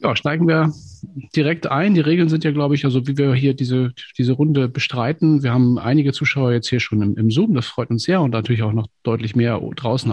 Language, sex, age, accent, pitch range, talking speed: German, male, 40-59, German, 105-140 Hz, 235 wpm